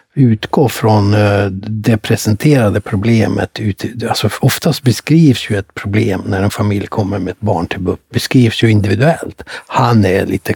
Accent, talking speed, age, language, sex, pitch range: native, 155 wpm, 60-79, Swedish, male, 105-125 Hz